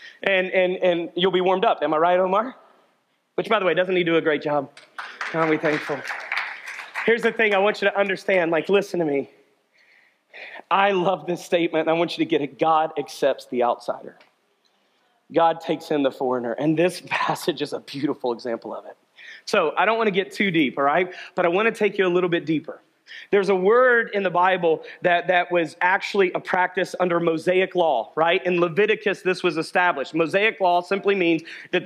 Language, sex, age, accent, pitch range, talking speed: English, male, 30-49, American, 175-210 Hz, 210 wpm